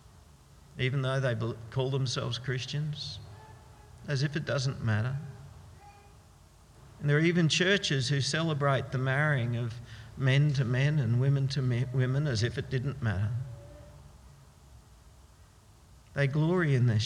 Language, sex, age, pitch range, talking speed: English, male, 50-69, 105-165 Hz, 130 wpm